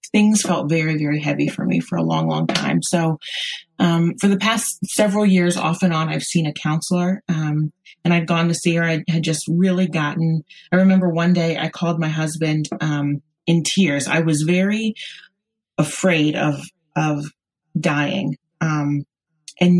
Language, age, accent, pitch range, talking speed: English, 30-49, American, 150-175 Hz, 175 wpm